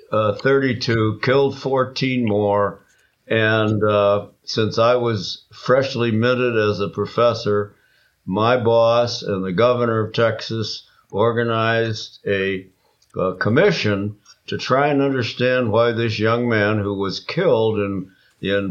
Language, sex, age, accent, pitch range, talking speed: English, male, 60-79, American, 100-120 Hz, 125 wpm